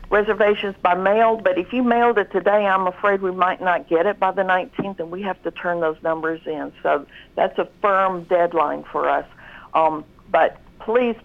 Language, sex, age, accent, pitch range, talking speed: English, female, 60-79, American, 175-215 Hz, 195 wpm